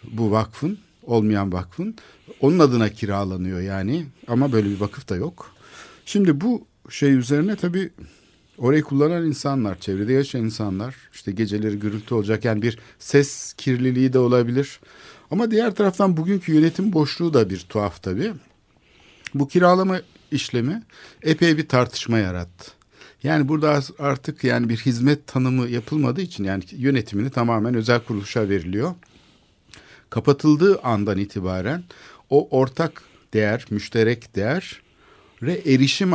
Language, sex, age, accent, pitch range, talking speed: Turkish, male, 60-79, native, 105-150 Hz, 130 wpm